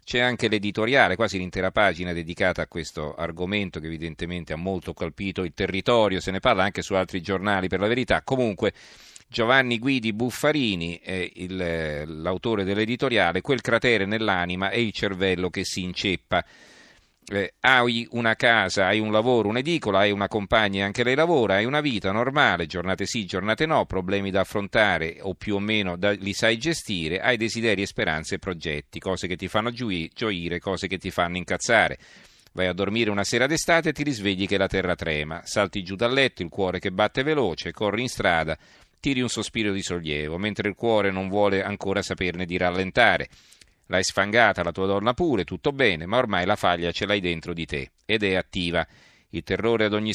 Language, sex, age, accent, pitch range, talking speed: Italian, male, 40-59, native, 90-110 Hz, 185 wpm